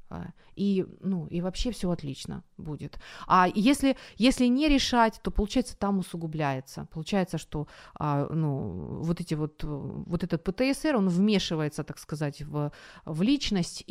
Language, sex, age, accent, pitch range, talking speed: Ukrainian, female, 30-49, native, 165-225 Hz, 140 wpm